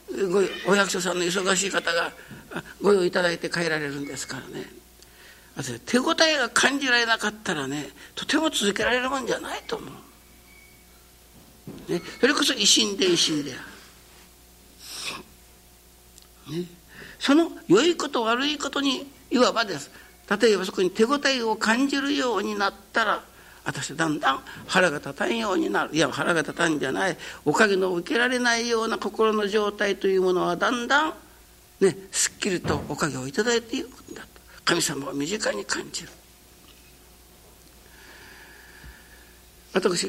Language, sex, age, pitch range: Japanese, male, 60-79, 145-225 Hz